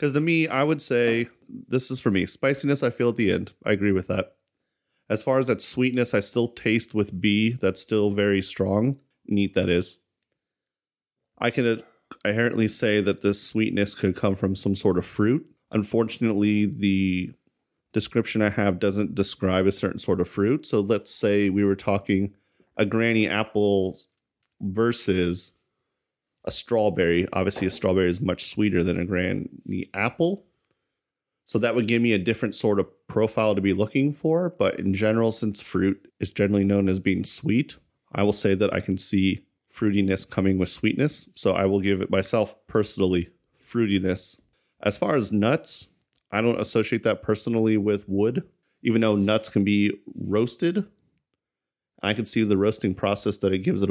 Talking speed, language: 175 wpm, English